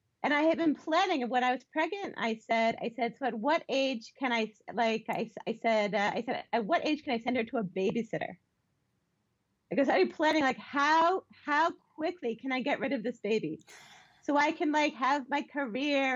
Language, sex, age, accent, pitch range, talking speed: English, female, 30-49, American, 230-300 Hz, 215 wpm